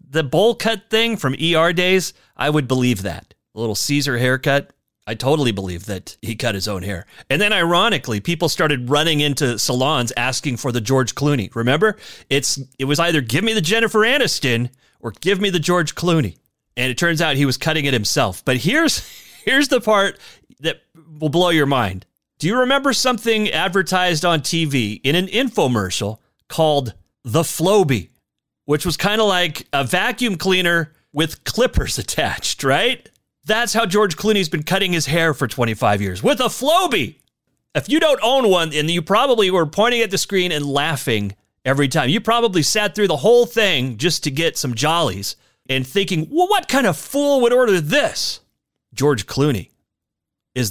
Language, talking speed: English, 180 wpm